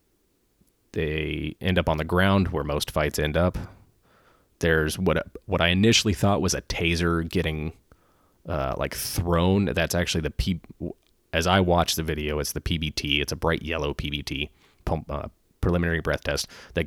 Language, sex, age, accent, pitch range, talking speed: English, male, 30-49, American, 80-95 Hz, 165 wpm